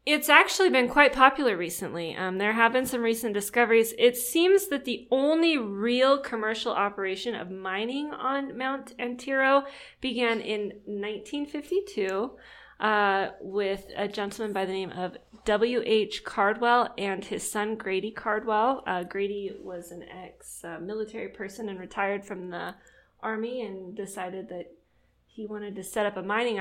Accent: American